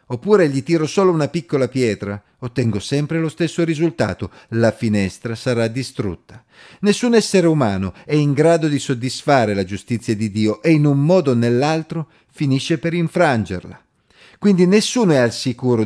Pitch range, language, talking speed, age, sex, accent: 115-160 Hz, Italian, 160 wpm, 40-59, male, native